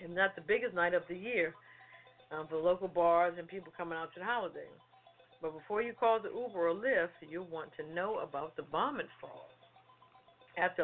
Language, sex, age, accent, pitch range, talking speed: English, female, 50-69, American, 160-215 Hz, 200 wpm